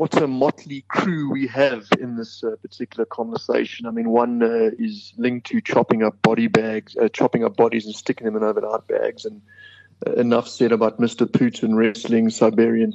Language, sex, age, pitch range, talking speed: English, male, 30-49, 115-155 Hz, 190 wpm